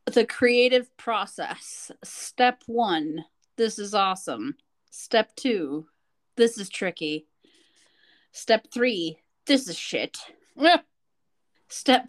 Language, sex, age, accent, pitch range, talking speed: English, female, 30-49, American, 200-265 Hz, 95 wpm